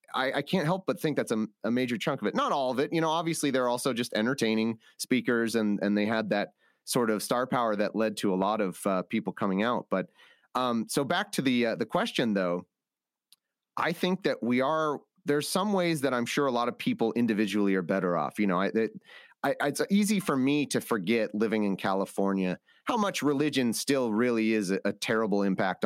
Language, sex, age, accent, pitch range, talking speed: English, male, 30-49, American, 105-145 Hz, 225 wpm